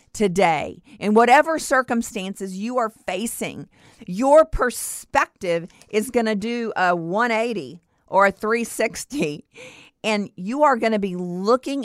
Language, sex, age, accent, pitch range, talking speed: English, female, 50-69, American, 200-260 Hz, 125 wpm